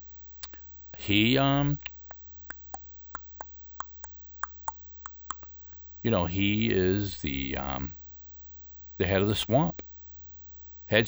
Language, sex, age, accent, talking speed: English, male, 50-69, American, 75 wpm